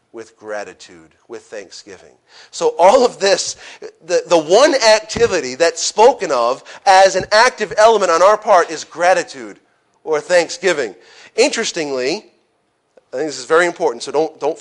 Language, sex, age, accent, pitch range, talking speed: English, male, 40-59, American, 175-255 Hz, 150 wpm